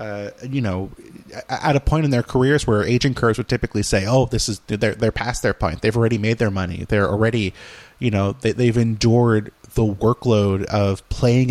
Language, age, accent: English, 30-49, American